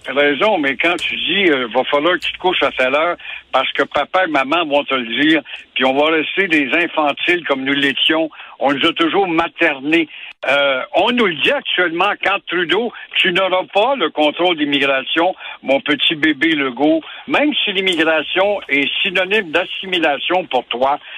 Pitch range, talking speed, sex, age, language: 160-230 Hz, 180 wpm, male, 60-79, French